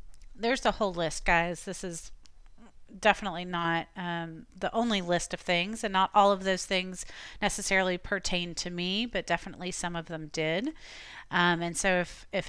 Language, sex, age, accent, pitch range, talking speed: English, female, 30-49, American, 160-190 Hz, 180 wpm